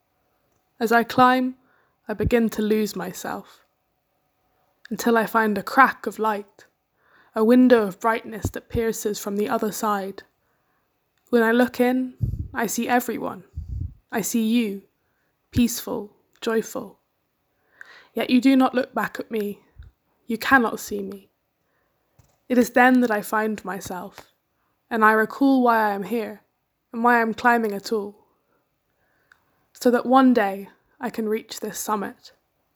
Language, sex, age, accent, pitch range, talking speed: English, female, 10-29, British, 210-245 Hz, 145 wpm